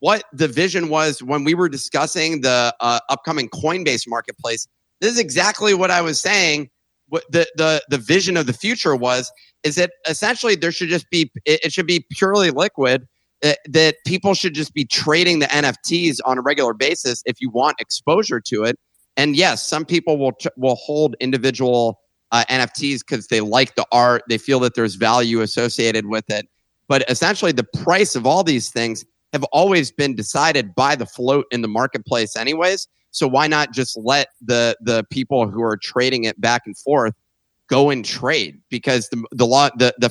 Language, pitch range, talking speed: English, 120-160 Hz, 190 wpm